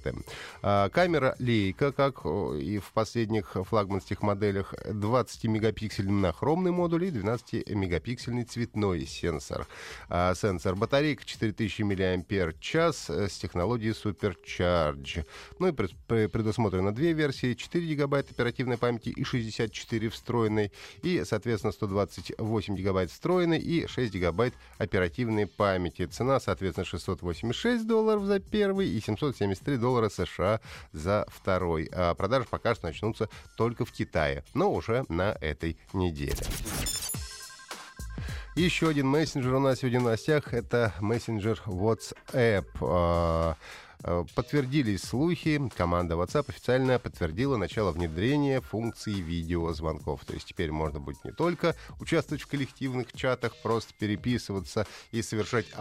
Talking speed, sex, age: 115 wpm, male, 30-49